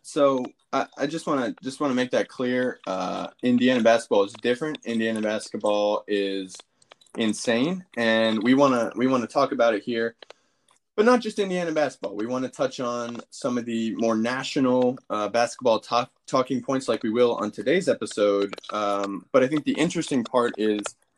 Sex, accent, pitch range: male, American, 110-140 Hz